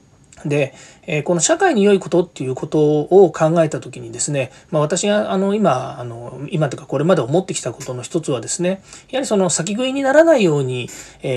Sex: male